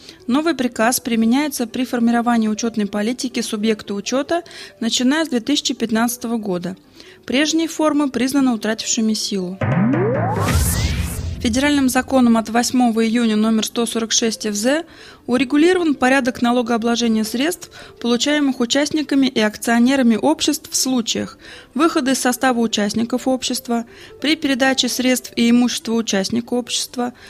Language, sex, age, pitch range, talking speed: Russian, female, 20-39, 220-270 Hz, 110 wpm